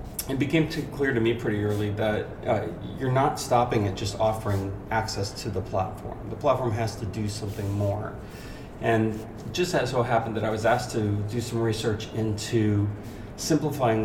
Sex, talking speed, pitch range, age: male, 185 wpm, 100-115 Hz, 40-59